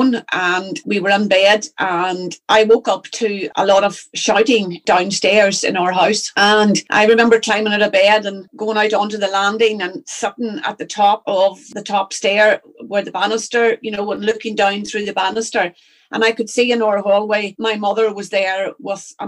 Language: English